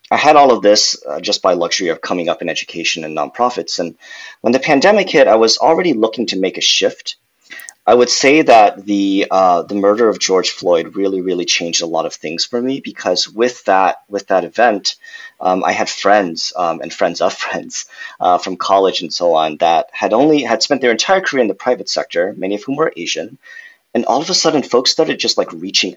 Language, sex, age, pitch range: English, male, 30-49, 100-160 Hz